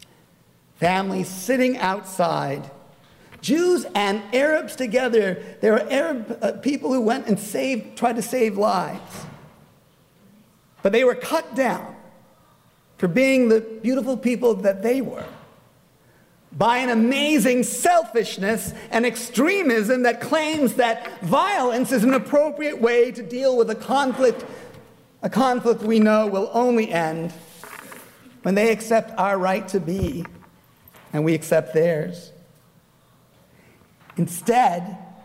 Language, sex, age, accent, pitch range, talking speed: English, male, 50-69, American, 190-250 Hz, 120 wpm